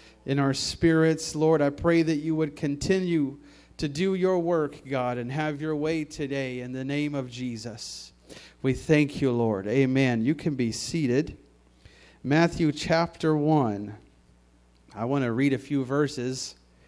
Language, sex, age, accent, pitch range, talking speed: English, male, 40-59, American, 100-140 Hz, 155 wpm